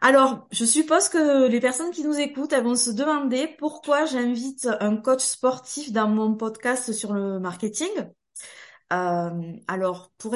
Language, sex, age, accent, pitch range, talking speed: French, female, 20-39, French, 185-255 Hz, 155 wpm